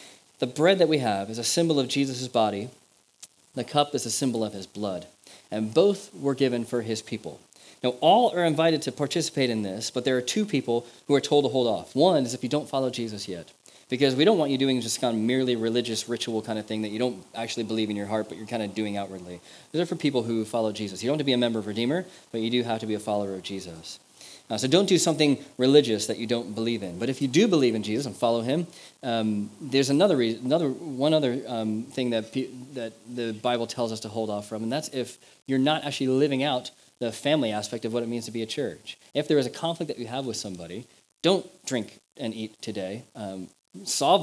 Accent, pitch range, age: American, 110-135 Hz, 30-49